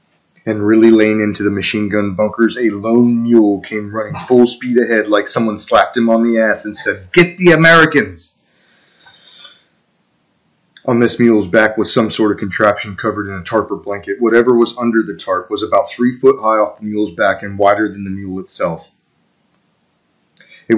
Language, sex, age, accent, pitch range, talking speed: English, male, 30-49, American, 100-115 Hz, 185 wpm